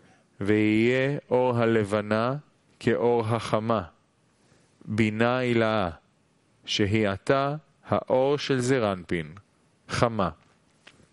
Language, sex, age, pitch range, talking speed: Italian, male, 30-49, 105-135 Hz, 70 wpm